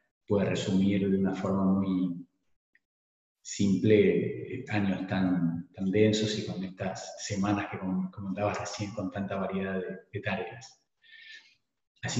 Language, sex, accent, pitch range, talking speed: Spanish, male, Argentinian, 100-125 Hz, 125 wpm